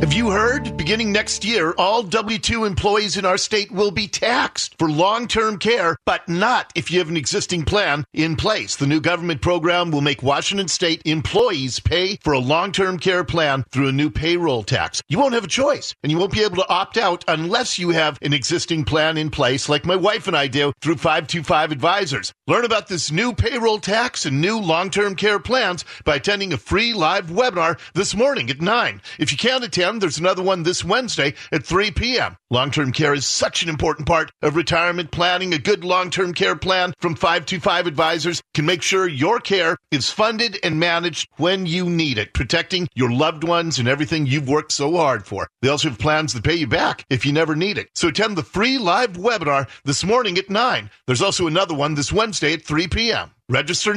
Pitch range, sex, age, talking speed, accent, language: 150-200 Hz, male, 40-59, 205 wpm, American, English